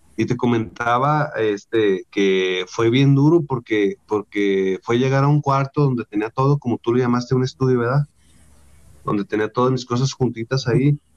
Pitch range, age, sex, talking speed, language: 120-150 Hz, 30-49, male, 170 wpm, Spanish